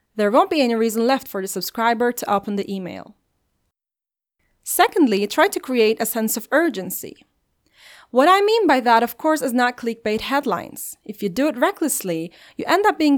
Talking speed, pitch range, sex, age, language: 185 wpm, 210-290 Hz, female, 30-49, English